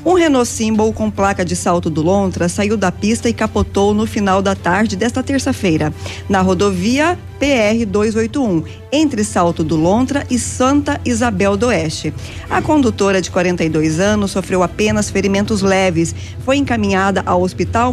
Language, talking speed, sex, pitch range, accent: Portuguese, 150 wpm, female, 180-225 Hz, Brazilian